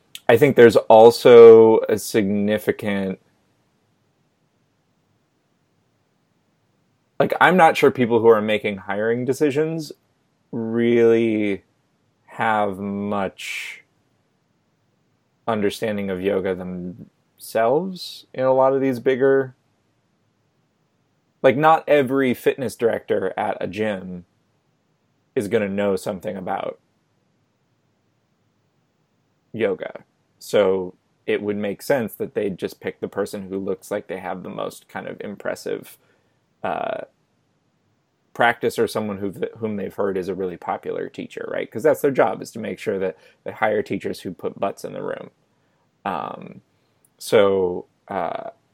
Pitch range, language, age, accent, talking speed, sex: 100-145 Hz, English, 20-39, American, 120 wpm, male